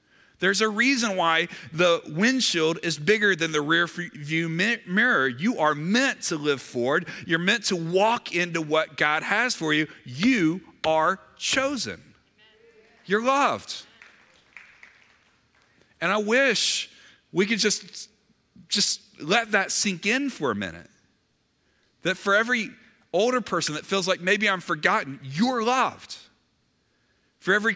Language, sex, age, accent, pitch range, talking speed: English, male, 40-59, American, 150-210 Hz, 135 wpm